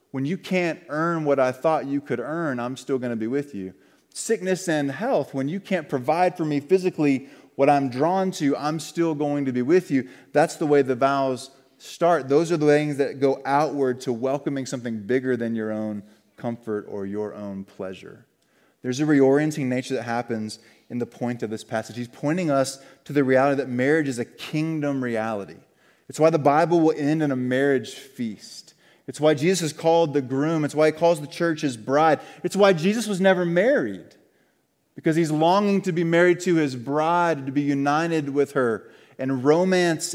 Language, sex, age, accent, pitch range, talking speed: English, male, 20-39, American, 125-160 Hz, 200 wpm